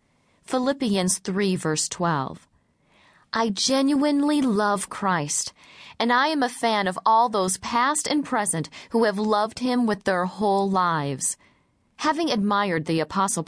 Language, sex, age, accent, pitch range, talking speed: English, female, 40-59, American, 180-245 Hz, 140 wpm